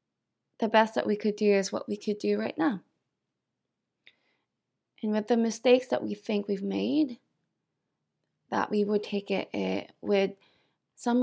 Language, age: English, 20-39